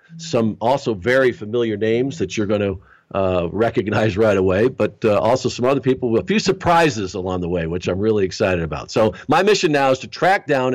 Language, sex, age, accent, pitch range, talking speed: English, male, 50-69, American, 95-125 Hz, 220 wpm